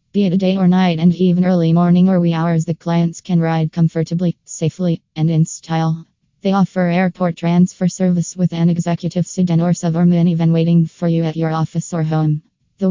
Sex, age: female, 20-39